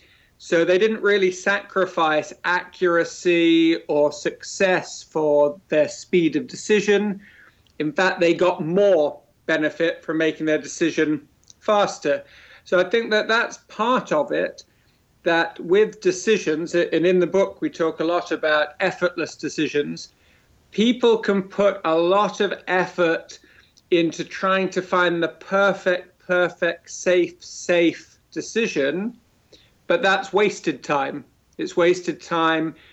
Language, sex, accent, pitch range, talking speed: English, male, British, 155-195 Hz, 130 wpm